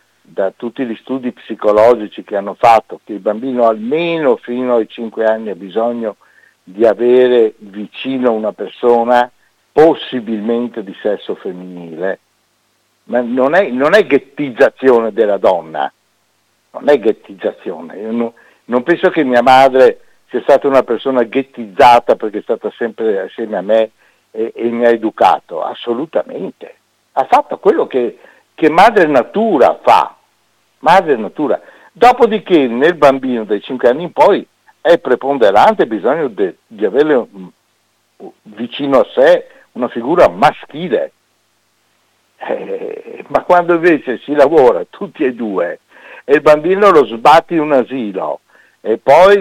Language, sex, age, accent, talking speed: Italian, male, 60-79, native, 140 wpm